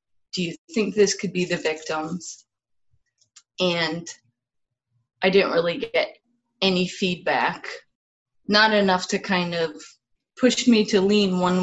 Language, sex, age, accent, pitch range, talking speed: English, female, 20-39, American, 165-215 Hz, 130 wpm